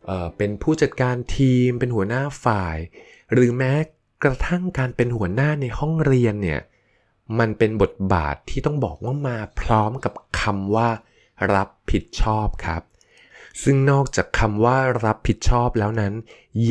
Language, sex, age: Thai, male, 20-39